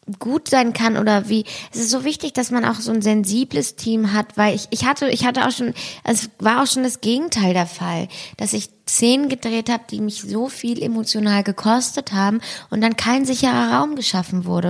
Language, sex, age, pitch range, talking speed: German, female, 20-39, 205-240 Hz, 210 wpm